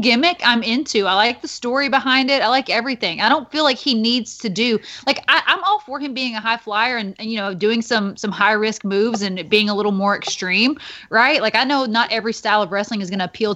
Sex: female